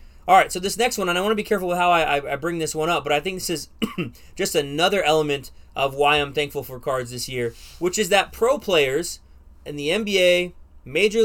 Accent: American